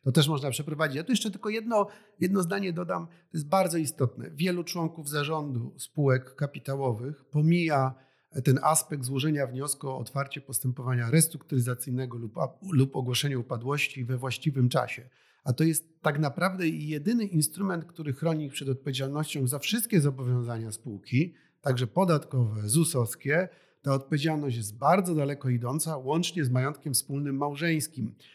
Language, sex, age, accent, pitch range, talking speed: Polish, male, 40-59, native, 130-160 Hz, 140 wpm